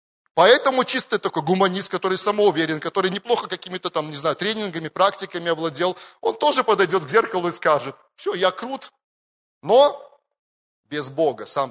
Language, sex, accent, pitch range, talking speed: Russian, male, native, 145-195 Hz, 150 wpm